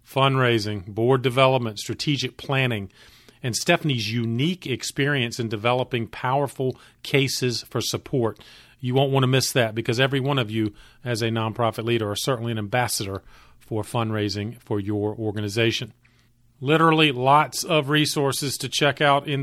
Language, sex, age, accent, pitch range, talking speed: English, male, 40-59, American, 120-155 Hz, 145 wpm